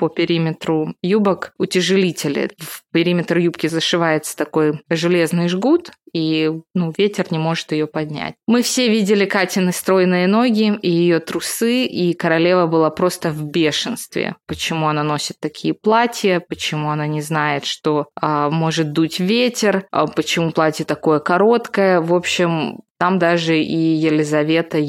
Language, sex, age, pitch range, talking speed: Russian, female, 20-39, 155-190 Hz, 140 wpm